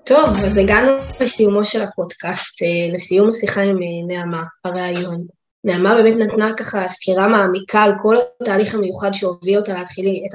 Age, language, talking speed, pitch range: 20-39, Hebrew, 145 wpm, 190-230 Hz